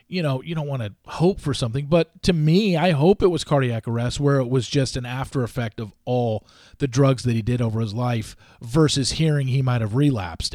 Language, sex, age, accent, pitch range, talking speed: English, male, 40-59, American, 115-150 Hz, 230 wpm